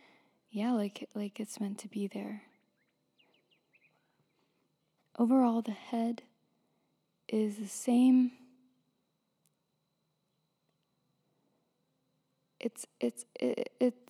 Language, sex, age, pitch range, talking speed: English, female, 20-39, 190-230 Hz, 70 wpm